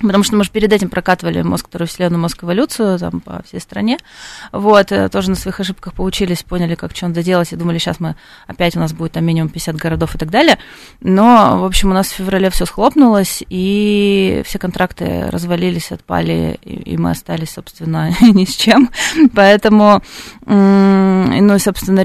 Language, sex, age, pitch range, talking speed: Russian, female, 20-39, 170-210 Hz, 175 wpm